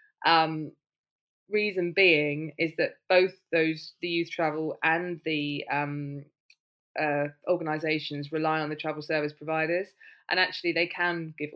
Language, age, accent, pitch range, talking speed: English, 20-39, British, 150-175 Hz, 135 wpm